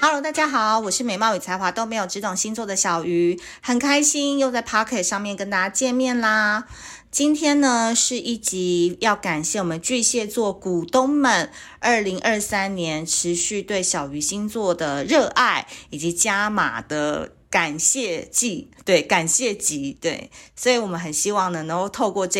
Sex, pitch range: female, 175-240 Hz